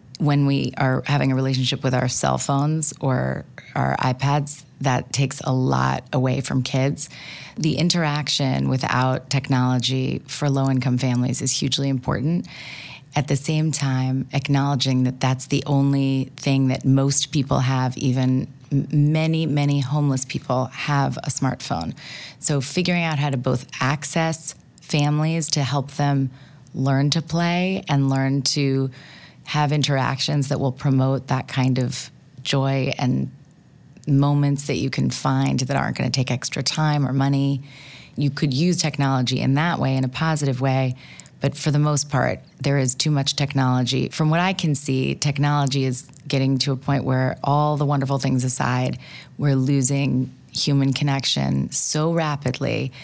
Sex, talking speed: female, 155 wpm